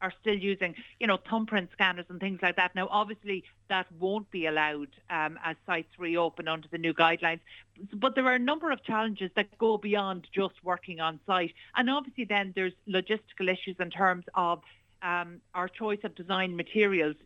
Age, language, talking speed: 50-69, English, 190 wpm